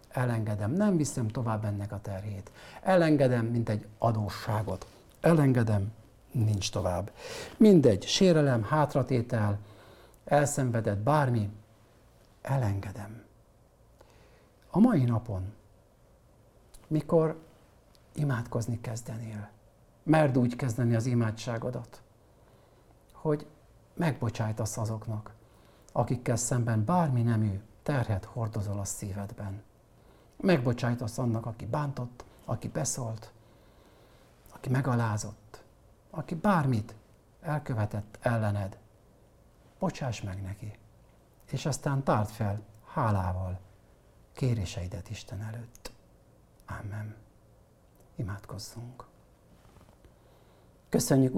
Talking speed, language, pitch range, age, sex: 80 wpm, Hungarian, 105-130 Hz, 50-69, male